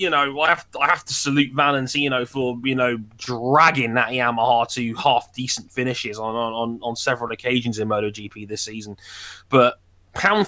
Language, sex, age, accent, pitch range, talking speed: English, male, 20-39, British, 110-130 Hz, 170 wpm